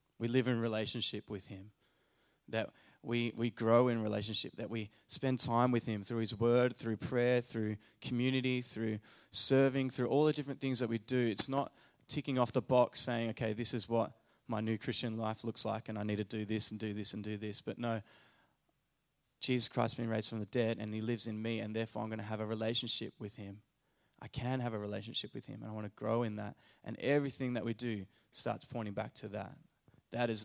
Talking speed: 225 wpm